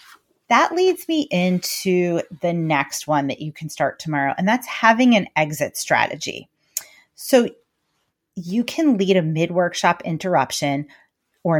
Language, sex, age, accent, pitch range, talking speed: English, female, 30-49, American, 160-220 Hz, 135 wpm